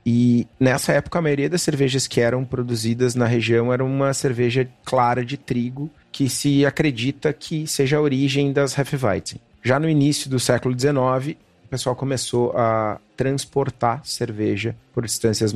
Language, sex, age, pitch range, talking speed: Portuguese, male, 30-49, 115-145 Hz, 160 wpm